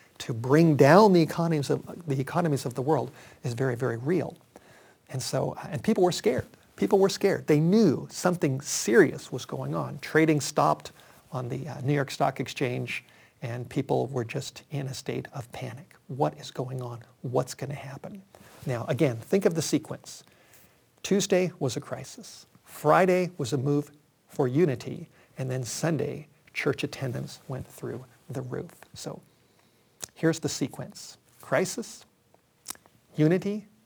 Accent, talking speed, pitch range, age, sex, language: American, 155 wpm, 130-160 Hz, 50-69, male, English